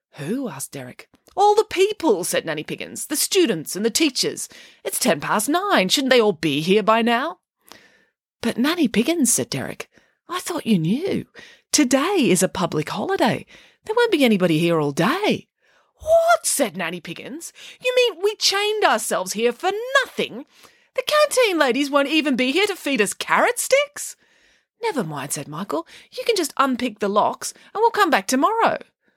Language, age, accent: English, 30-49, Australian